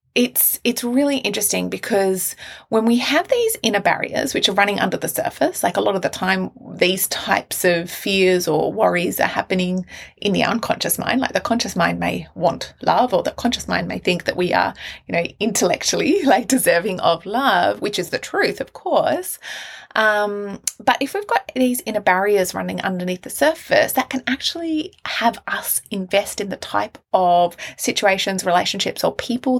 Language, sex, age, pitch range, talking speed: English, female, 20-39, 185-245 Hz, 180 wpm